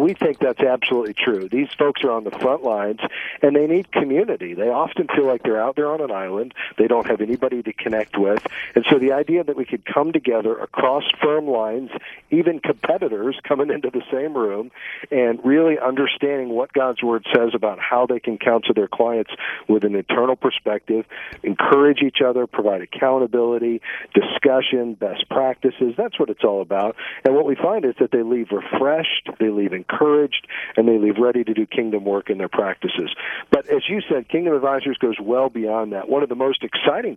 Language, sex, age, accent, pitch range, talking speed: English, male, 50-69, American, 110-135 Hz, 195 wpm